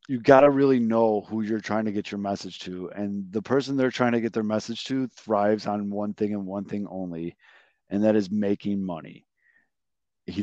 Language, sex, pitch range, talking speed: English, male, 95-115 Hz, 215 wpm